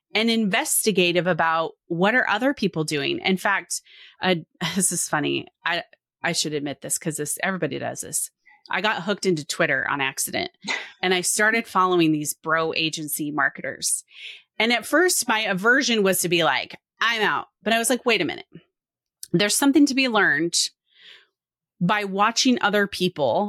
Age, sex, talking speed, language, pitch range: 30-49, female, 170 wpm, English, 165-215 Hz